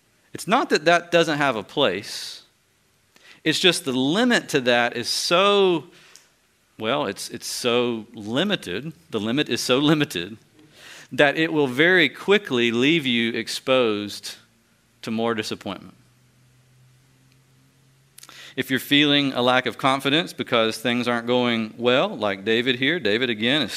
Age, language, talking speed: 40-59, English, 140 wpm